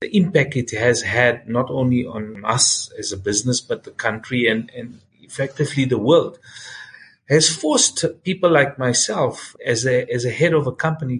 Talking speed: 170 wpm